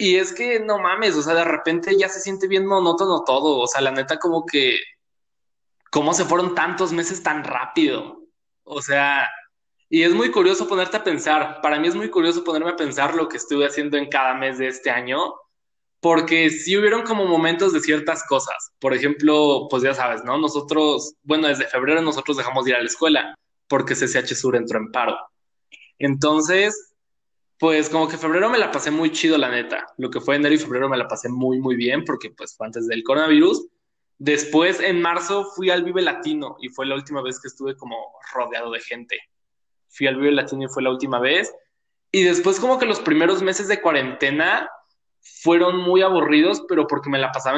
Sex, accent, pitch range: male, Mexican, 135-185 Hz